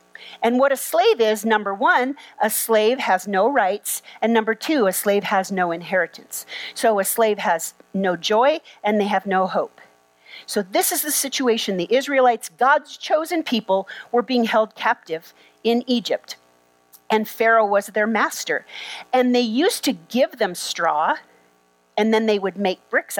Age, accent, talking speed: 40-59, American, 170 wpm